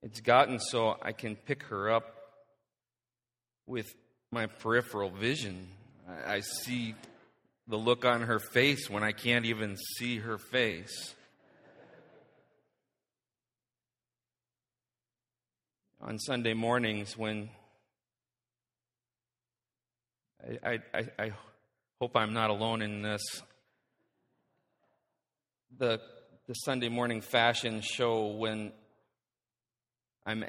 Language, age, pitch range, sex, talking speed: English, 40-59, 110-125 Hz, male, 95 wpm